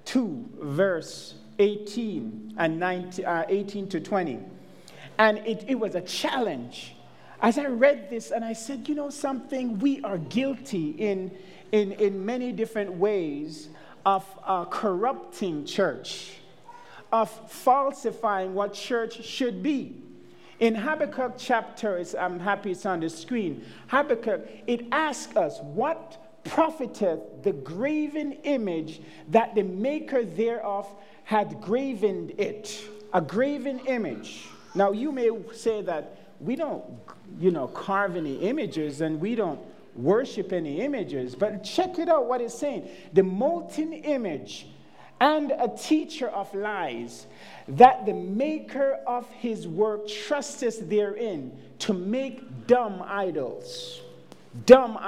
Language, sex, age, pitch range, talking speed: English, male, 50-69, 195-265 Hz, 125 wpm